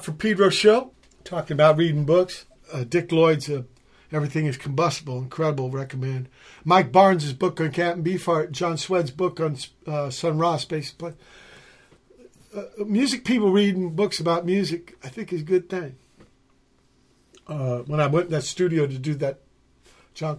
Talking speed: 160 wpm